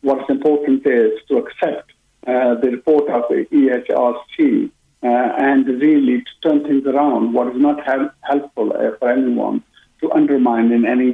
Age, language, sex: 50-69, English, male